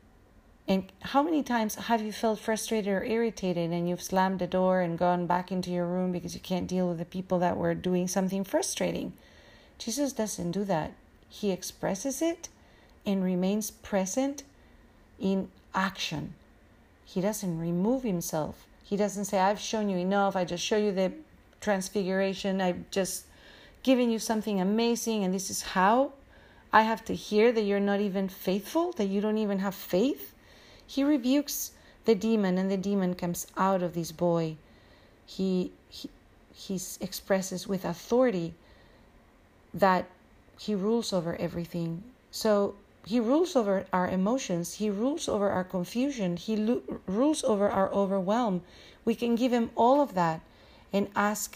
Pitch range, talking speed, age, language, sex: 180-215 Hz, 160 wpm, 40-59, English, female